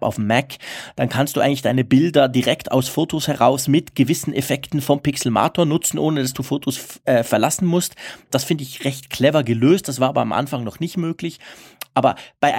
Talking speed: 195 wpm